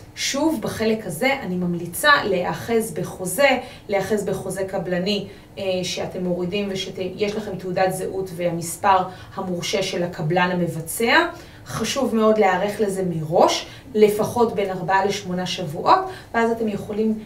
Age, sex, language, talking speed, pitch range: 30-49, female, Hebrew, 120 wpm, 185-230 Hz